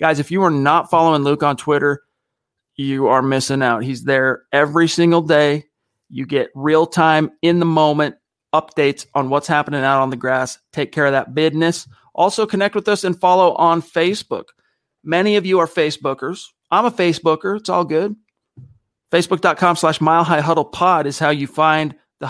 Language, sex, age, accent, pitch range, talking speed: English, male, 40-59, American, 145-175 Hz, 165 wpm